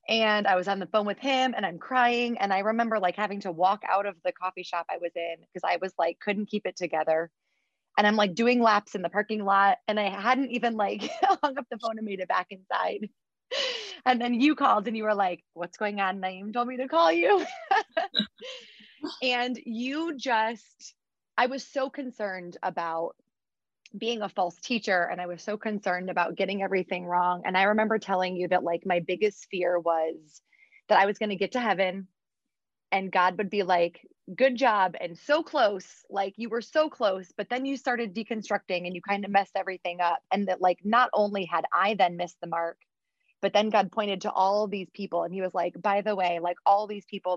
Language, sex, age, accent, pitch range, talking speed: English, female, 20-39, American, 180-235 Hz, 215 wpm